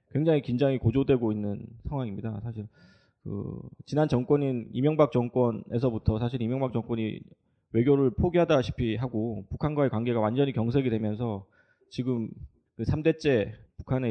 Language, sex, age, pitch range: Korean, male, 20-39, 110-140 Hz